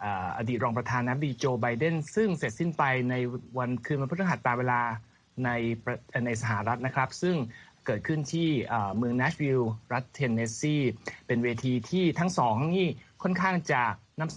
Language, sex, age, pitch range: Thai, male, 20-39, 120-160 Hz